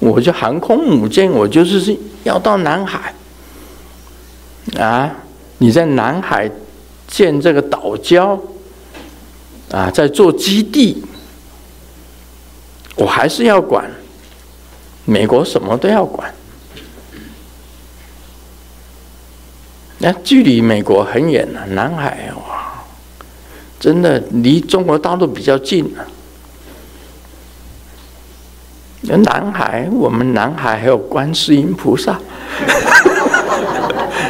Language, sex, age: Chinese, male, 50-69